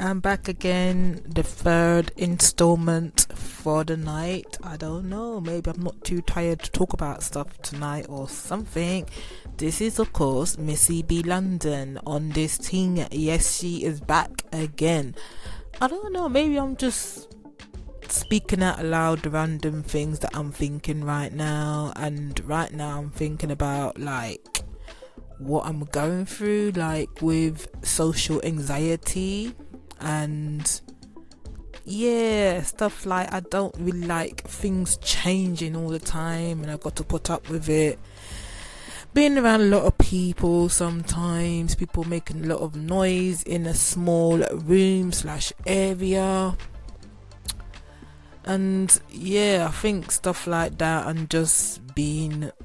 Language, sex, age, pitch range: English, female, 20-39, 150-185 Hz